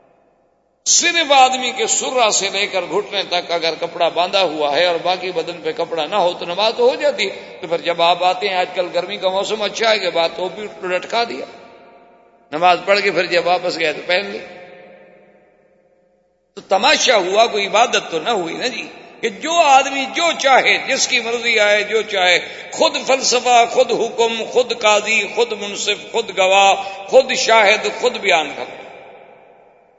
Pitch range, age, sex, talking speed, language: 175-240 Hz, 60-79, male, 185 wpm, Urdu